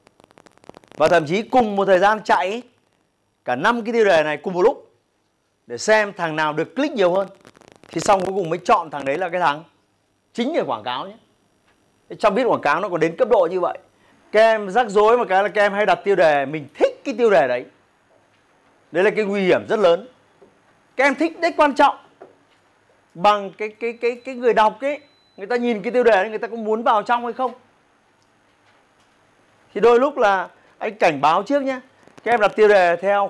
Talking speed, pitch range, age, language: 220 wpm, 180-240 Hz, 30-49, Vietnamese